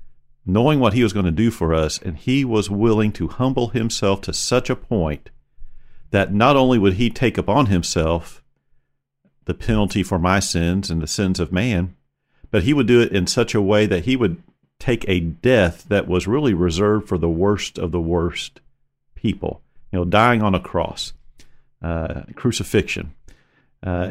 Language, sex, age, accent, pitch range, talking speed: English, male, 50-69, American, 90-120 Hz, 180 wpm